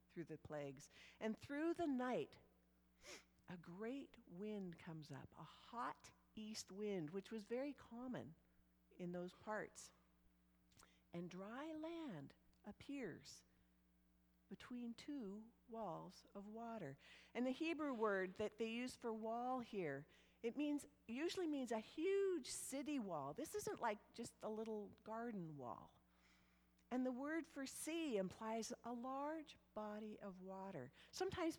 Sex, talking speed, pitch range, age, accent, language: female, 135 wpm, 160-255 Hz, 50-69, American, English